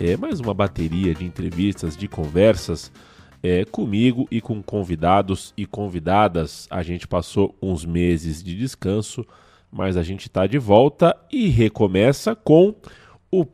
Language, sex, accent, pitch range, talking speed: Portuguese, male, Brazilian, 85-105 Hz, 140 wpm